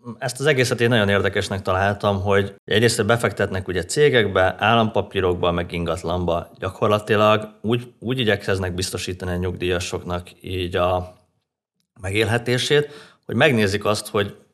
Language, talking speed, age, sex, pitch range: Hungarian, 120 wpm, 30-49, male, 95-120 Hz